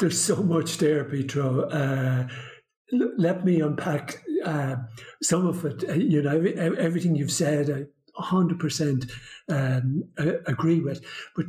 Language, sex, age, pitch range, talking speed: English, male, 60-79, 140-165 Hz, 135 wpm